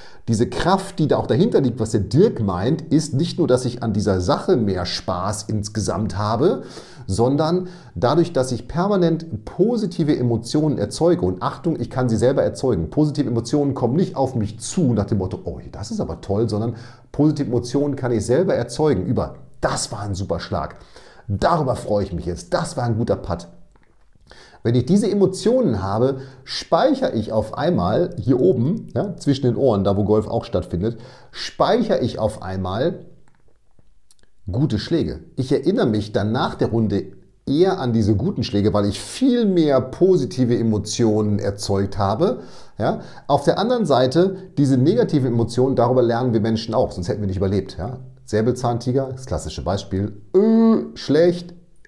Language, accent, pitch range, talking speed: German, German, 105-150 Hz, 170 wpm